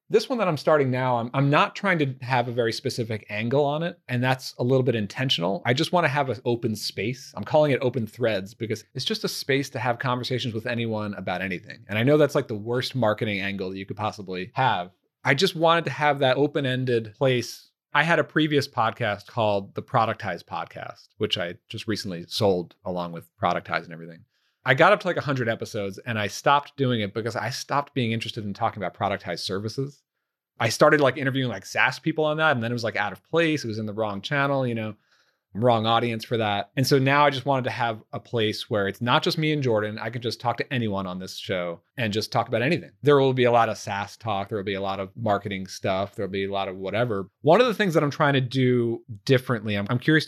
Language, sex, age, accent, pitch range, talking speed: English, male, 30-49, American, 105-140 Hz, 245 wpm